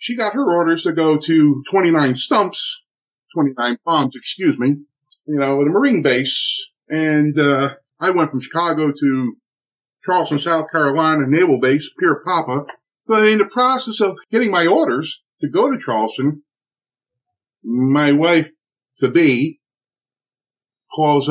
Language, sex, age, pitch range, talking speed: English, male, 50-69, 135-225 Hz, 130 wpm